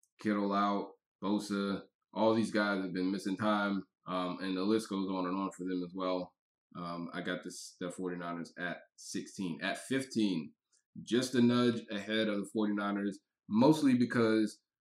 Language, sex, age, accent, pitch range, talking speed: English, male, 20-39, American, 95-110 Hz, 160 wpm